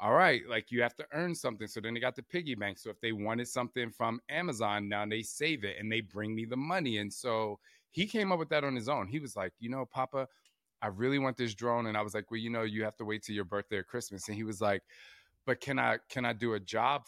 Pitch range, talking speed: 110-135 Hz, 285 wpm